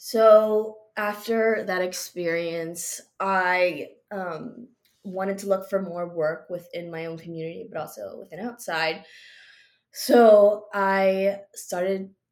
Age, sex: 20-39, female